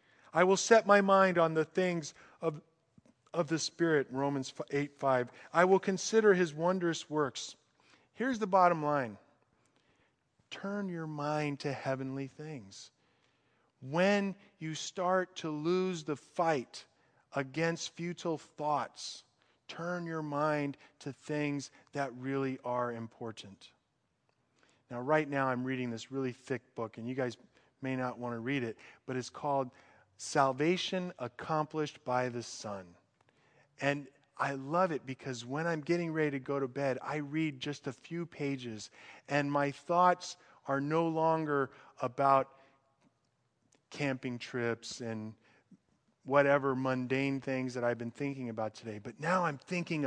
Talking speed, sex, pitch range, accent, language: 140 wpm, male, 130-165 Hz, American, English